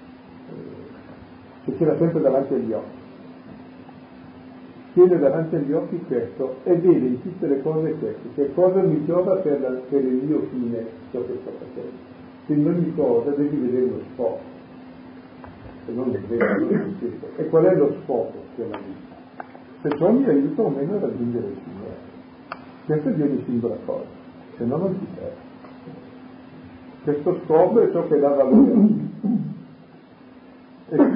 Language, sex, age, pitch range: Italian, male, 40-59, 130-175 Hz